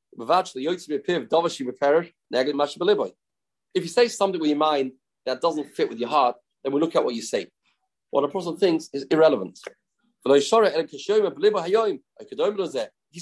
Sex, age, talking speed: male, 30-49, 125 wpm